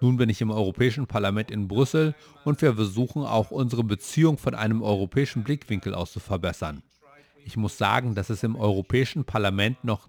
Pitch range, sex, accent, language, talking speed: 105-135 Hz, male, German, German, 180 wpm